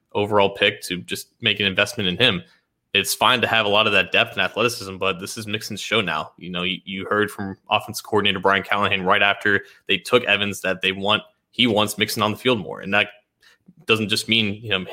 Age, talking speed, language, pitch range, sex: 20-39, 235 wpm, English, 100-115 Hz, male